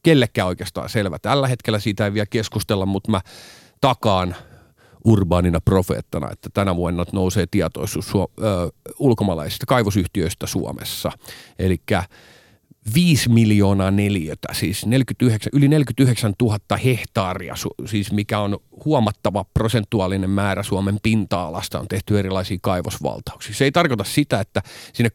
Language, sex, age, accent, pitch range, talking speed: Finnish, male, 40-59, native, 95-115 Hz, 120 wpm